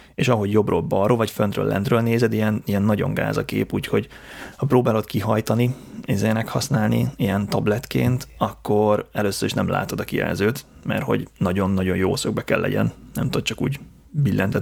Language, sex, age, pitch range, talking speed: Hungarian, male, 30-49, 100-120 Hz, 160 wpm